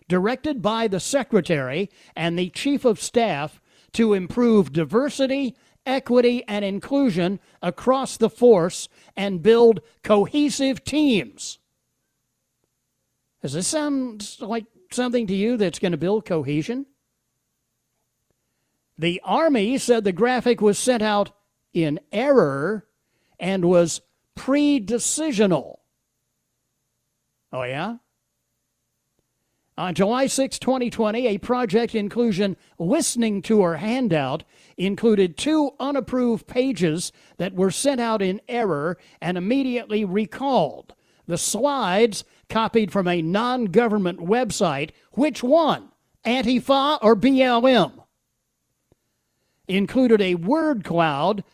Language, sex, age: English, male, 60-79